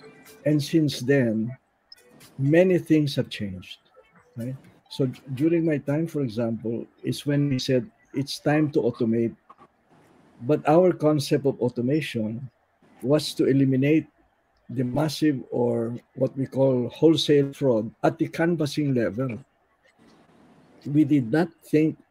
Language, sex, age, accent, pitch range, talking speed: Filipino, male, 50-69, native, 115-145 Hz, 120 wpm